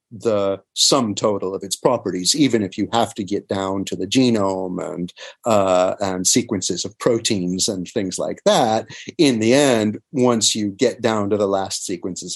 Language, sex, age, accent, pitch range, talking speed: English, male, 50-69, American, 95-135 Hz, 180 wpm